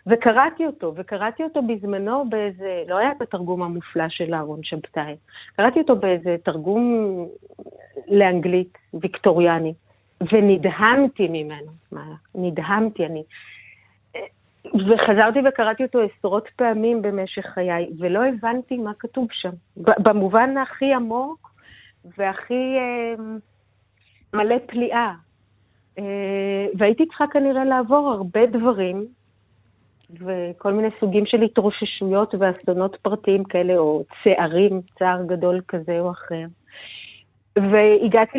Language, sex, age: Hebrew, female, 40-59